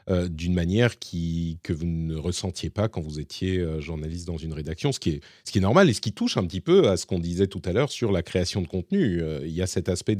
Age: 40-59